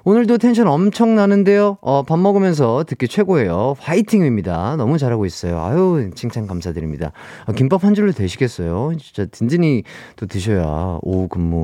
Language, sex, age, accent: Korean, male, 30-49, native